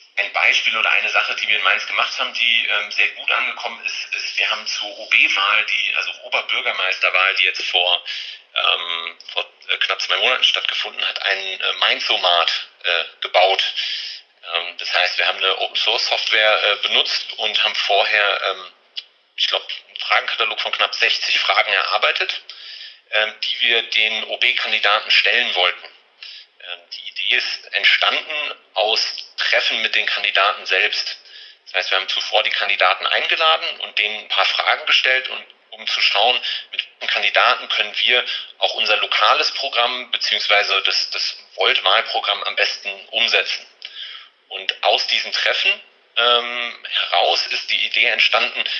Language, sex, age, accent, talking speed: German, male, 40-59, German, 150 wpm